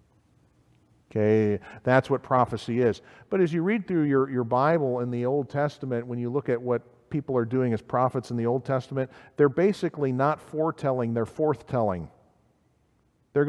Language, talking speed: English, 170 wpm